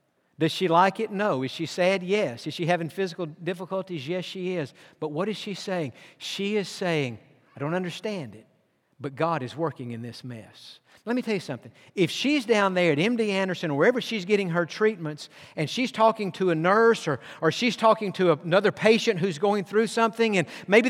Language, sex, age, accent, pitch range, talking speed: English, male, 50-69, American, 170-230 Hz, 210 wpm